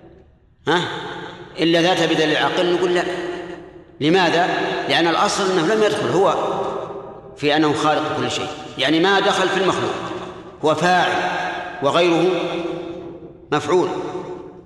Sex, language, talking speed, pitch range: male, Arabic, 115 wpm, 140-175 Hz